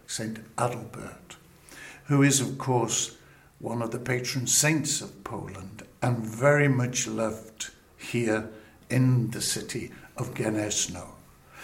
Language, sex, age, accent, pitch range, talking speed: English, male, 60-79, British, 110-130 Hz, 120 wpm